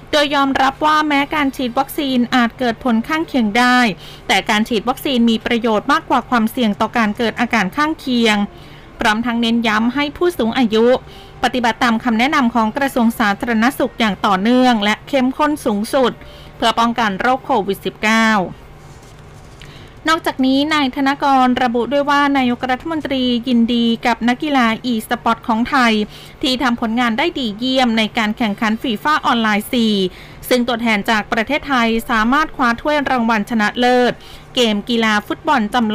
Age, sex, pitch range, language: 20-39, female, 220-265 Hz, Thai